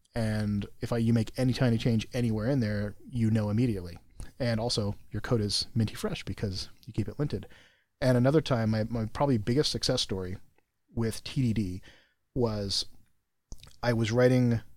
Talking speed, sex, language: 165 wpm, male, English